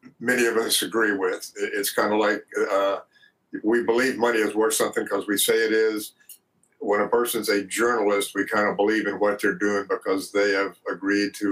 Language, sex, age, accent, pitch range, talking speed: English, male, 60-79, American, 100-120 Hz, 205 wpm